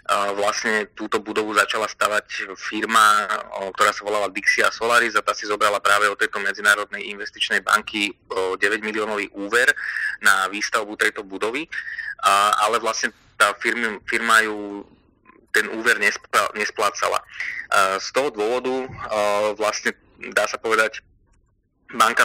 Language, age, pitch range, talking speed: Slovak, 20-39, 105-120 Hz, 120 wpm